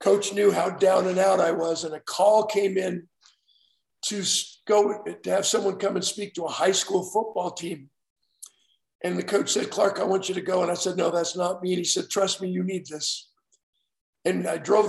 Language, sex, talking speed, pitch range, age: English, male, 220 wpm, 175-200 Hz, 50-69